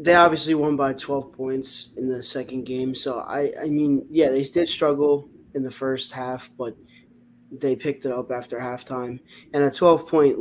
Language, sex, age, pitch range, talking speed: English, male, 20-39, 125-145 Hz, 185 wpm